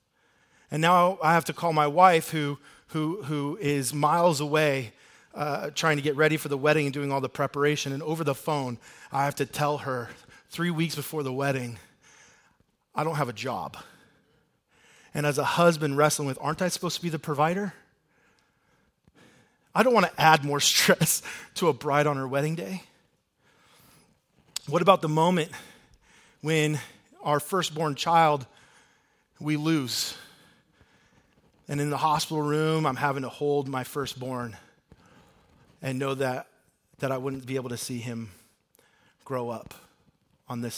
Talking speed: 160 wpm